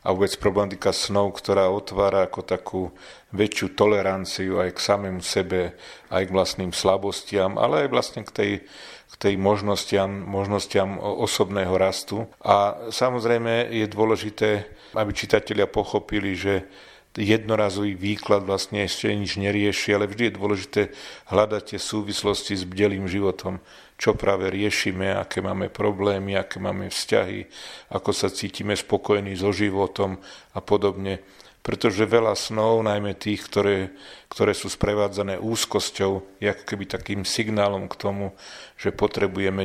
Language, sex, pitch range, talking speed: Slovak, male, 95-105 Hz, 130 wpm